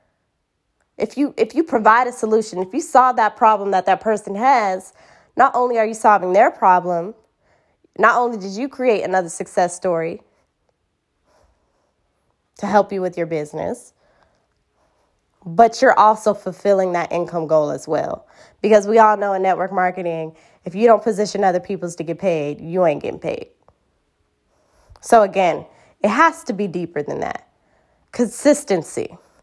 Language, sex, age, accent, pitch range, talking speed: English, female, 20-39, American, 180-225 Hz, 155 wpm